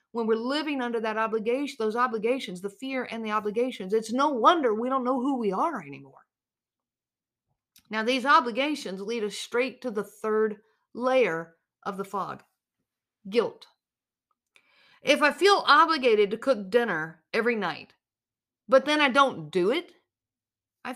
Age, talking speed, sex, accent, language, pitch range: 50-69, 150 wpm, female, American, English, 210-270 Hz